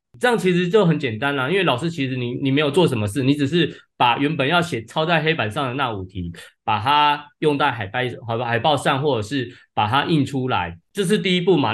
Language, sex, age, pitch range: Chinese, male, 20-39, 120-160 Hz